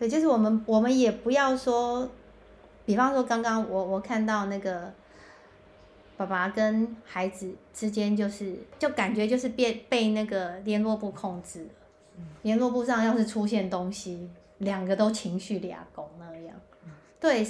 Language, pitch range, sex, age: Chinese, 185-220 Hz, female, 30-49